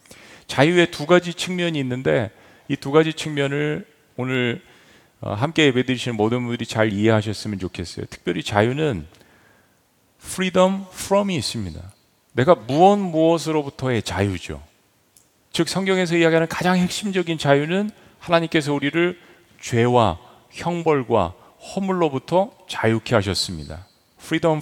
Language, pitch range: Korean, 120-175 Hz